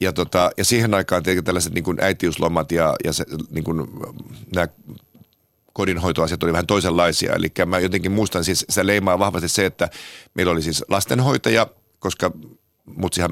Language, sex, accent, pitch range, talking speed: Finnish, male, native, 85-100 Hz, 150 wpm